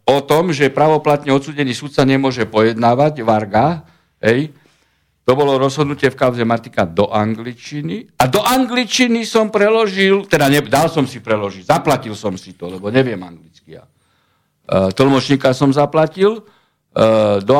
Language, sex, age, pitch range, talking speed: Slovak, male, 60-79, 125-175 Hz, 150 wpm